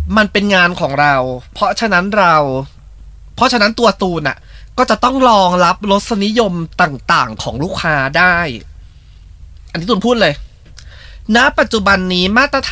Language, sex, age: Thai, male, 20-39